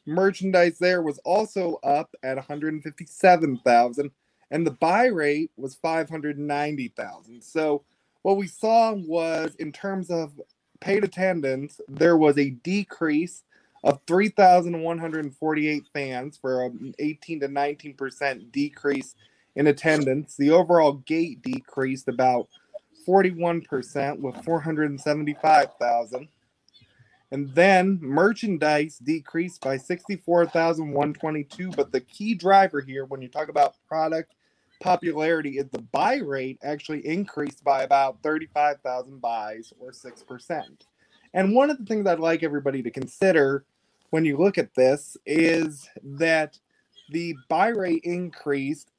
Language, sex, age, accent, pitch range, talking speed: English, male, 20-39, American, 140-175 Hz, 120 wpm